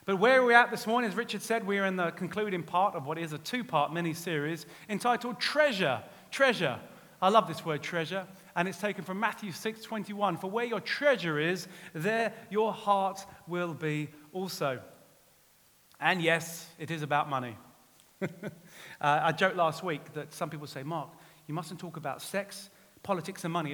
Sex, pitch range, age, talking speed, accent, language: male, 150-200 Hz, 30-49, 180 wpm, British, English